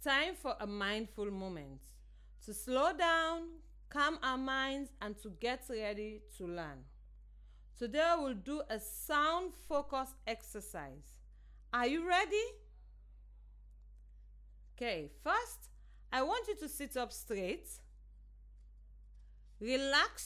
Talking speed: 115 wpm